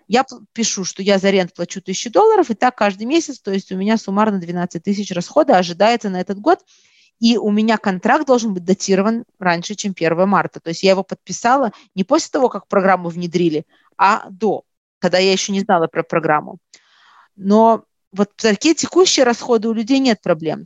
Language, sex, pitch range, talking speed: Russian, female, 185-230 Hz, 190 wpm